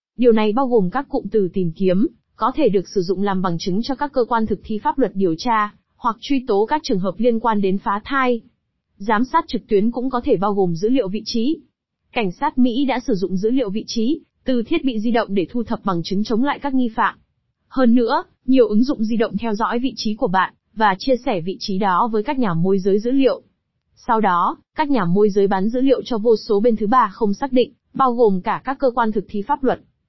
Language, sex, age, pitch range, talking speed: Vietnamese, female, 20-39, 200-250 Hz, 260 wpm